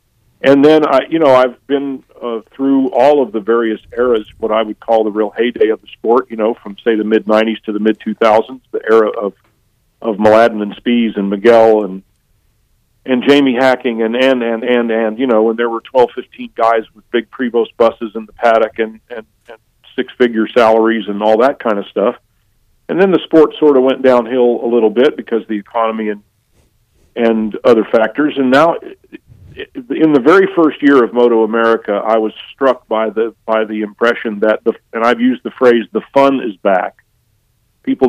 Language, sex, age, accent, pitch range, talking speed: English, male, 50-69, American, 110-130 Hz, 205 wpm